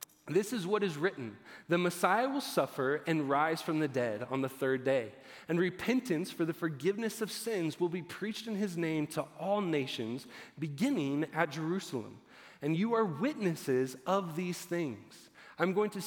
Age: 30-49